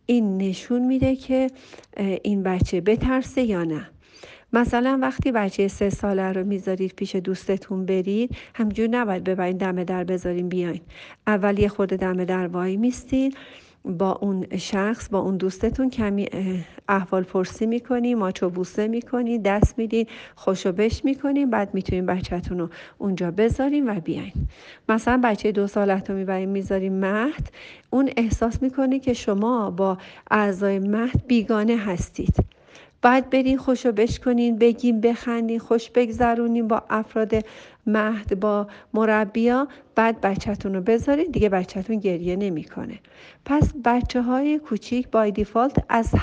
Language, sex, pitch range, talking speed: Persian, female, 190-245 Hz, 135 wpm